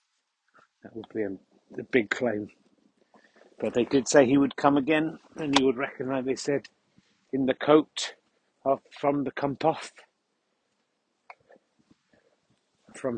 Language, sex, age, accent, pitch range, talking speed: English, male, 50-69, British, 140-160 Hz, 135 wpm